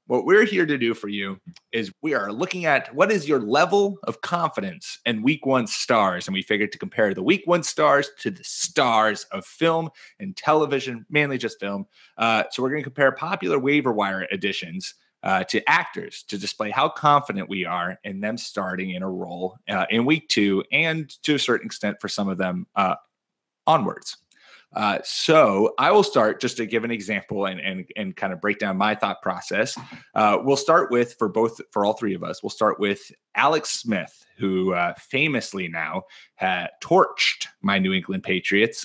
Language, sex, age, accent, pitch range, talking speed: English, male, 30-49, American, 100-155 Hz, 195 wpm